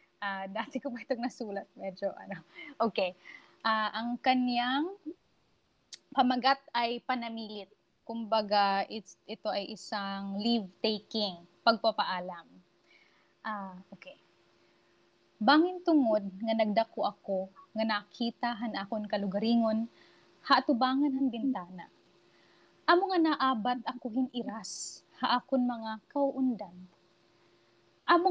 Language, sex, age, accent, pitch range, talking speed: Filipino, female, 20-39, native, 205-260 Hz, 110 wpm